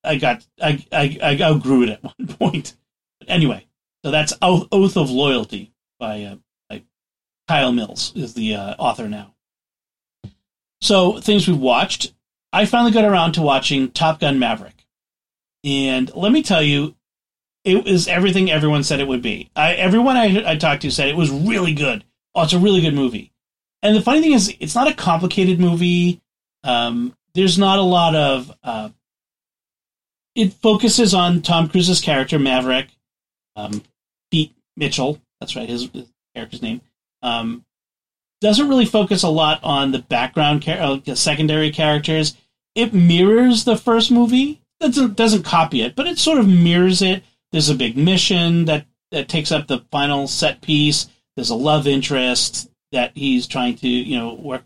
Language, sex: English, male